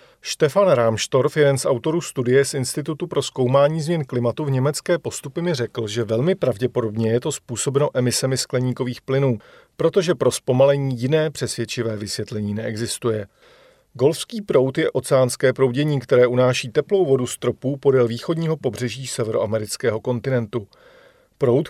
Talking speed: 140 wpm